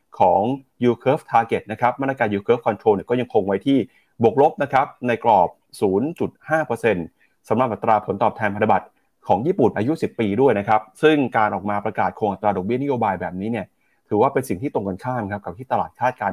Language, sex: Thai, male